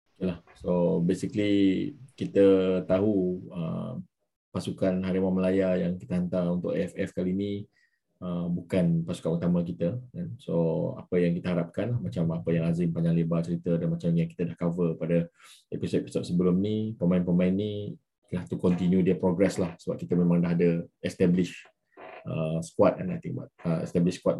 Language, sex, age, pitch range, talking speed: Malay, male, 20-39, 85-95 Hz, 160 wpm